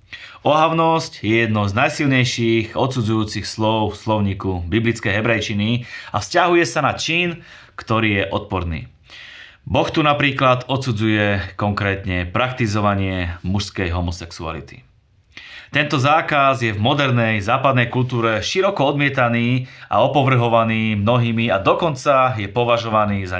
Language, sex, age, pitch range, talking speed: Slovak, male, 30-49, 100-130 Hz, 115 wpm